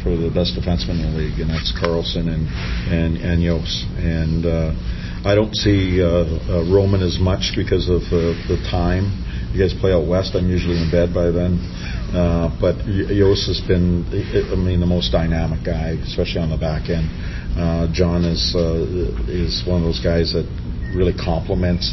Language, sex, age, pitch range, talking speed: English, male, 50-69, 80-90 Hz, 185 wpm